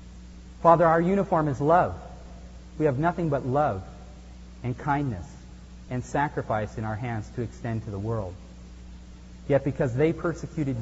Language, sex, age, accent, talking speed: English, male, 40-59, American, 145 wpm